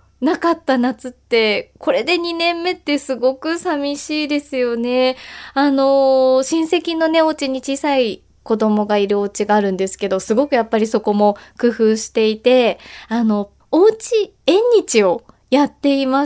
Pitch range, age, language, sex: 225-300 Hz, 20-39, Japanese, female